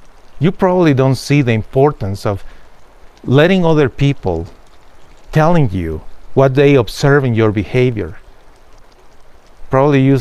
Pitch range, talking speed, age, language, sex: 115-140 Hz, 120 wpm, 40-59, English, male